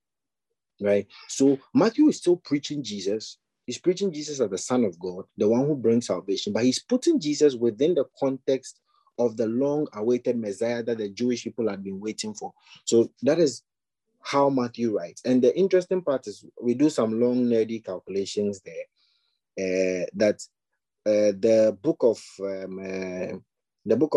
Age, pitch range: 30-49, 105-140 Hz